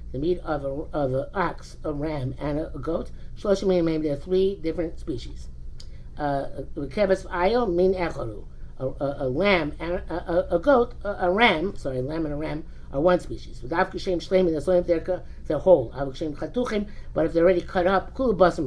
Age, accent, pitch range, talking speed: 50-69, American, 150-190 Hz, 195 wpm